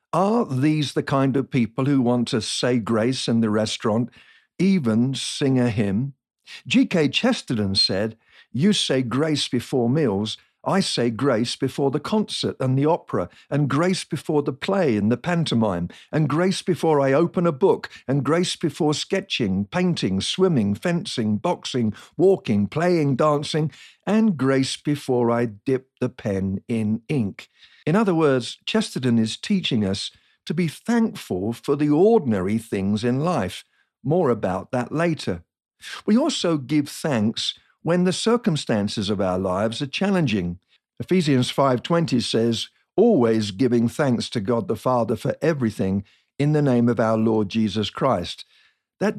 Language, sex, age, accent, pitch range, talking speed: English, male, 50-69, British, 115-165 Hz, 150 wpm